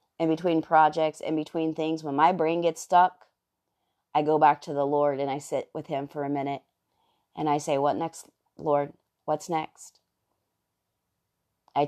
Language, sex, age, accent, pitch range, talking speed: English, female, 30-49, American, 145-160 Hz, 170 wpm